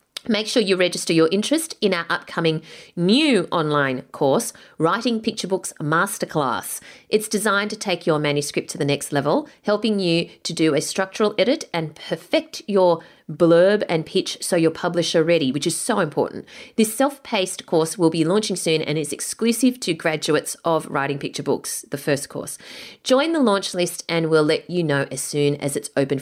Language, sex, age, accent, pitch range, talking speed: English, female, 30-49, Australian, 155-215 Hz, 185 wpm